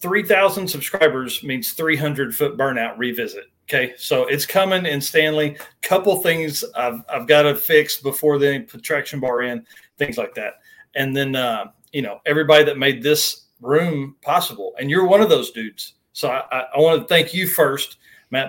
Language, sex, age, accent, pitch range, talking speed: English, male, 40-59, American, 135-160 Hz, 180 wpm